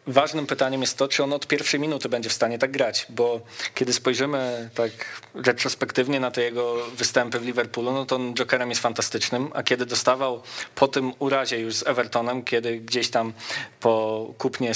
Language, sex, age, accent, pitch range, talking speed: Polish, male, 20-39, native, 115-135 Hz, 185 wpm